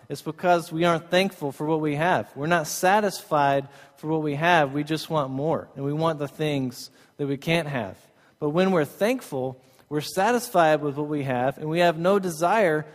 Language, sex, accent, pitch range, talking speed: English, male, American, 145-180 Hz, 205 wpm